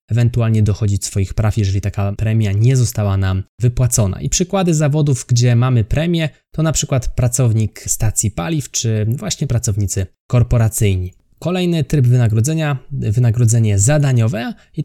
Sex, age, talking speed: male, 20-39, 135 wpm